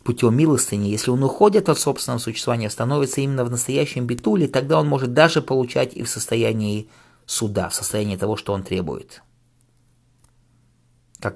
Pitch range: 115-125 Hz